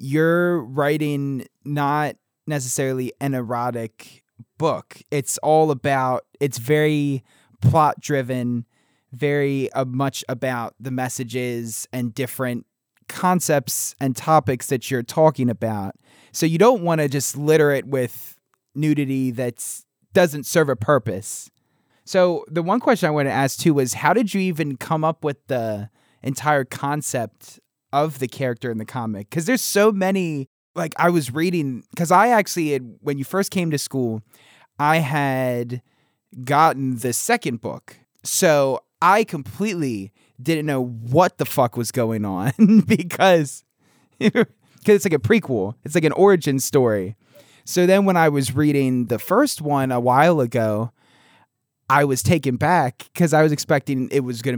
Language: English